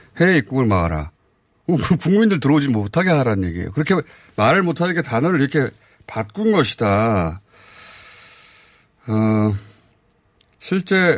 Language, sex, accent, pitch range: Korean, male, native, 100-150 Hz